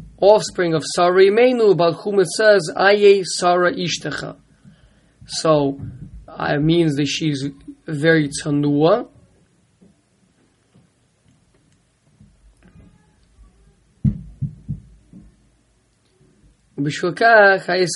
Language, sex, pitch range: English, male, 150-180 Hz